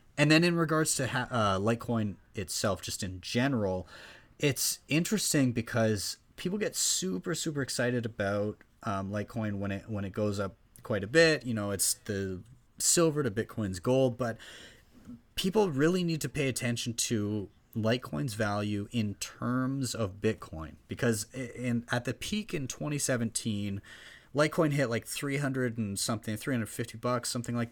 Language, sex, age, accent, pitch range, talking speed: English, male, 30-49, American, 105-140 Hz, 155 wpm